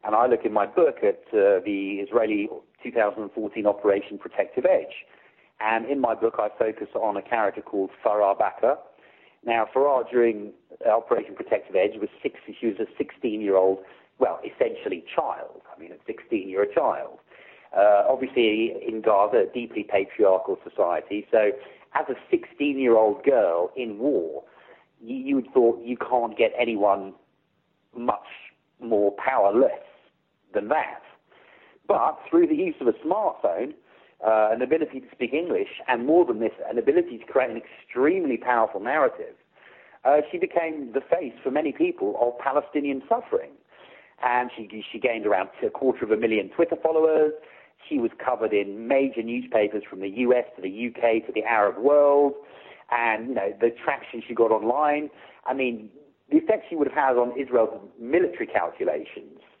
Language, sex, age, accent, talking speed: English, male, 40-59, British, 160 wpm